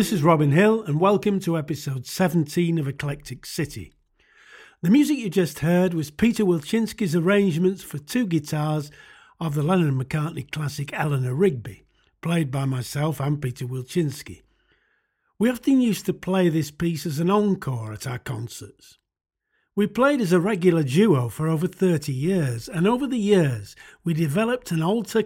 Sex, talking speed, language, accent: male, 160 wpm, English, British